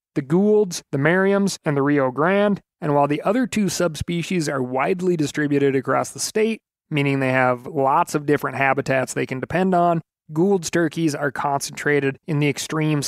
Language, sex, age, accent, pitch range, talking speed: English, male, 30-49, American, 140-170 Hz, 175 wpm